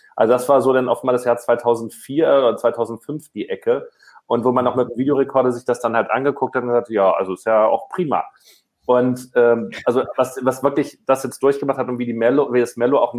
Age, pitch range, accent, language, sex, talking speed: 30-49, 110-130 Hz, German, German, male, 240 wpm